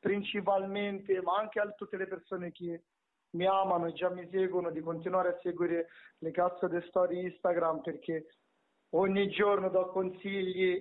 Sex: male